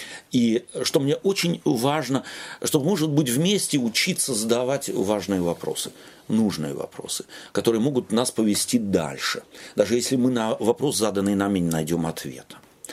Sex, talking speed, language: male, 140 wpm, Russian